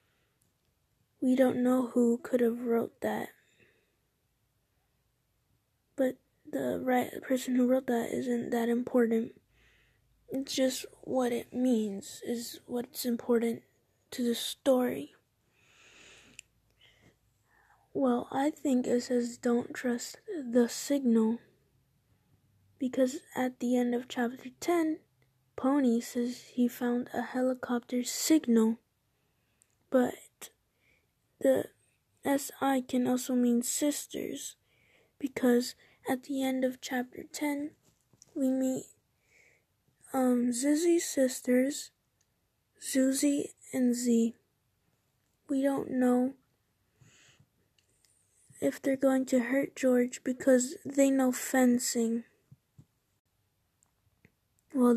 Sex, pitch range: female, 230-260 Hz